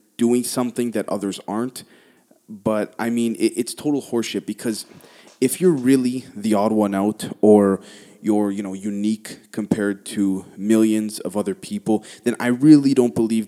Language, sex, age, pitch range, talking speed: English, male, 20-39, 100-120 Hz, 155 wpm